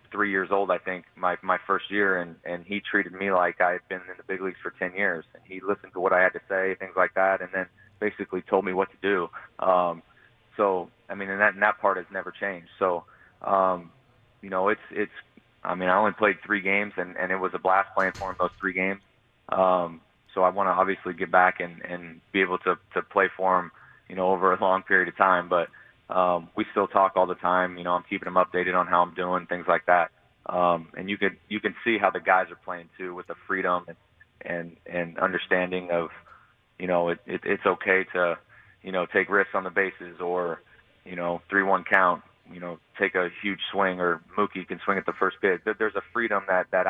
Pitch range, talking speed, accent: 90-95 Hz, 240 wpm, American